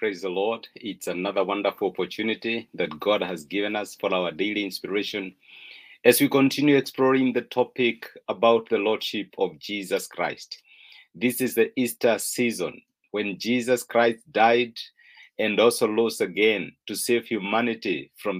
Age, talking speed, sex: 50-69, 145 wpm, male